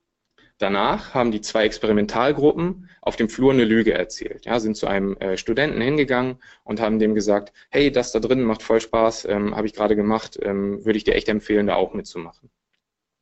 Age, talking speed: 20-39, 195 wpm